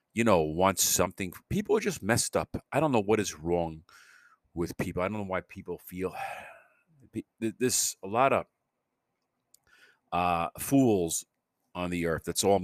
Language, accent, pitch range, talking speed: English, American, 85-100 Hz, 165 wpm